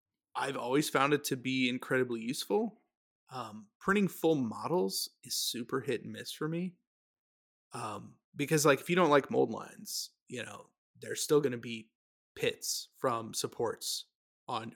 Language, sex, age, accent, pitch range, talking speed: English, male, 30-49, American, 125-160 Hz, 160 wpm